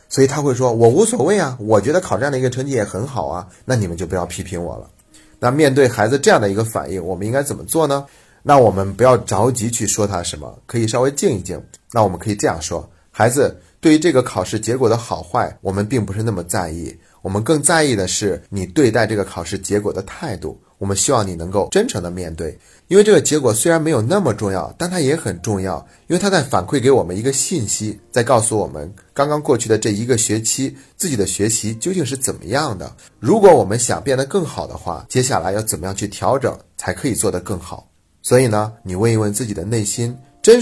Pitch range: 95-130 Hz